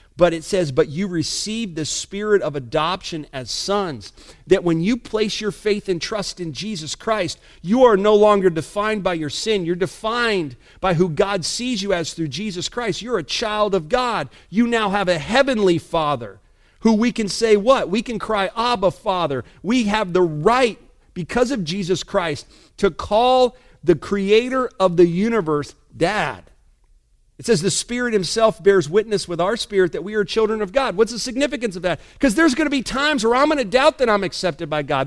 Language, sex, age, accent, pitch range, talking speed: English, male, 50-69, American, 185-255 Hz, 195 wpm